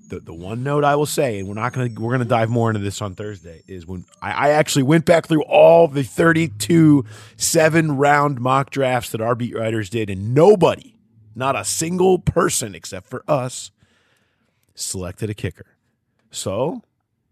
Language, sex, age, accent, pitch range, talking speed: English, male, 30-49, American, 95-125 Hz, 185 wpm